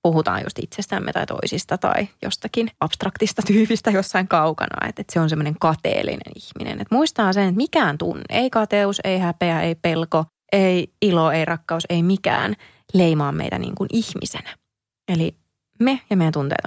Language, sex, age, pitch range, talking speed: Finnish, female, 20-39, 170-230 Hz, 165 wpm